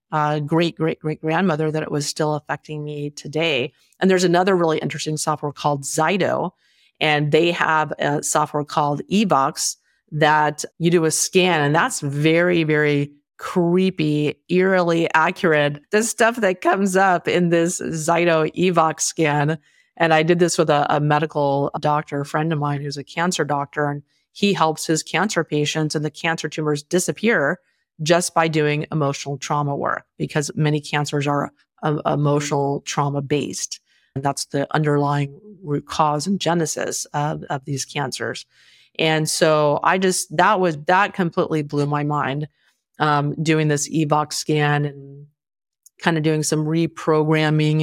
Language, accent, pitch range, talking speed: English, American, 145-165 Hz, 155 wpm